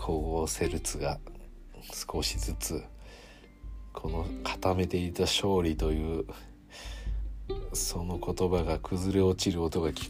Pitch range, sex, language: 80-100 Hz, male, Japanese